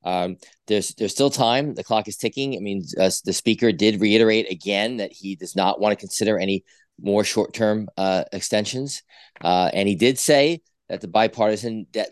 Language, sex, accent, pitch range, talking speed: English, male, American, 95-120 Hz, 195 wpm